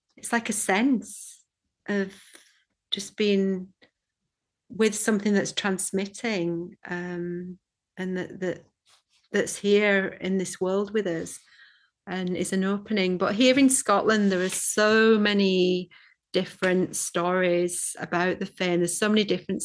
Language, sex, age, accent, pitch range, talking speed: English, female, 40-59, British, 180-200 Hz, 130 wpm